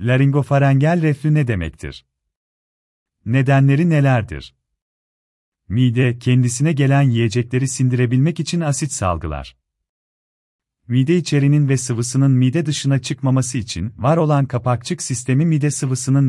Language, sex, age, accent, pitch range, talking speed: Turkish, male, 40-59, native, 100-145 Hz, 105 wpm